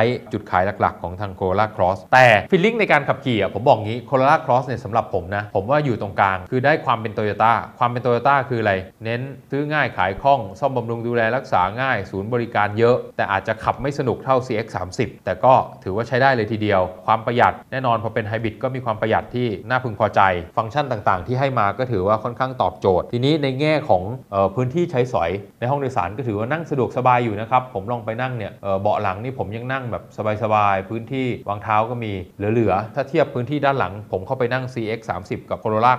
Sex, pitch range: male, 105-125 Hz